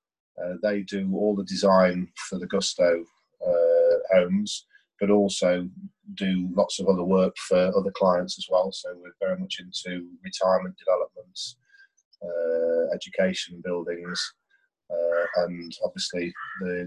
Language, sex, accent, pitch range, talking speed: English, male, British, 90-105 Hz, 130 wpm